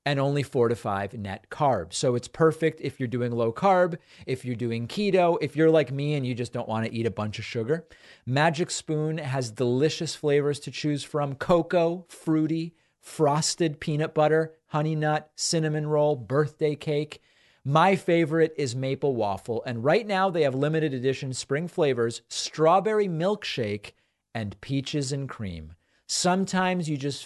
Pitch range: 120-160 Hz